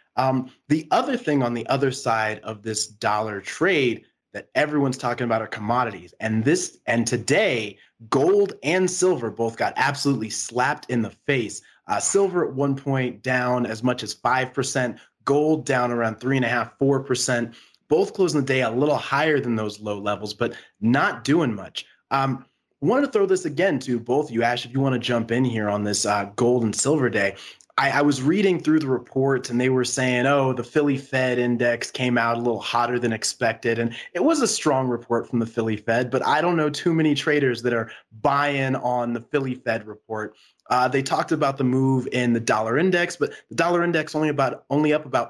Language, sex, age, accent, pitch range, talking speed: English, male, 20-39, American, 115-145 Hz, 210 wpm